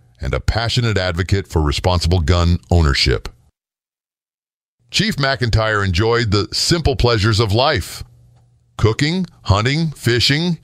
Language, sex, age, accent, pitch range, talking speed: English, male, 50-69, American, 95-120 Hz, 105 wpm